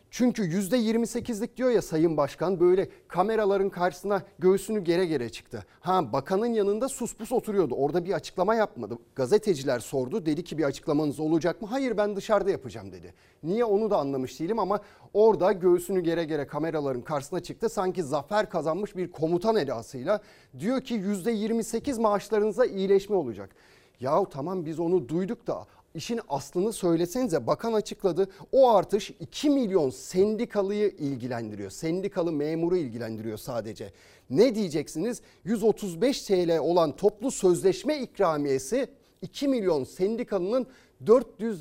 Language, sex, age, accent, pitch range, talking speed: Turkish, male, 40-59, native, 150-215 Hz, 135 wpm